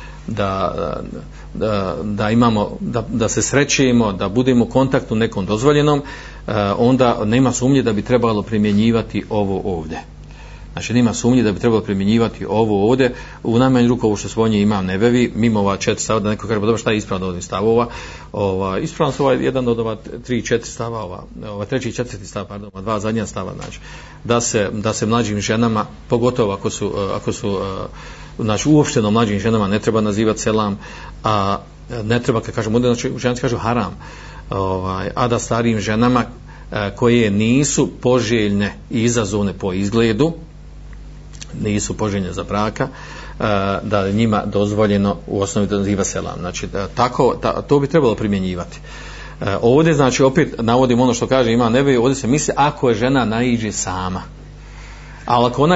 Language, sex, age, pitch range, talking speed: Croatian, male, 40-59, 100-125 Hz, 160 wpm